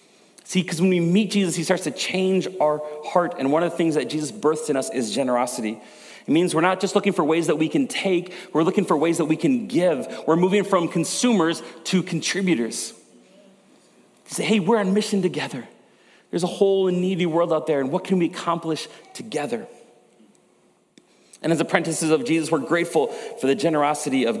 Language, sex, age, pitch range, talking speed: English, male, 40-59, 120-170 Hz, 195 wpm